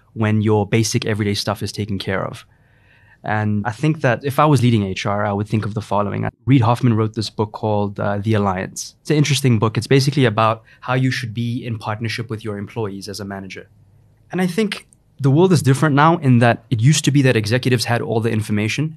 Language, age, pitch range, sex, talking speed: English, 20-39, 110-130 Hz, male, 230 wpm